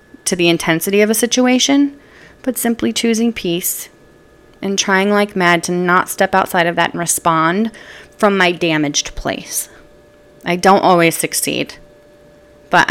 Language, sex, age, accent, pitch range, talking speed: English, female, 30-49, American, 170-210 Hz, 145 wpm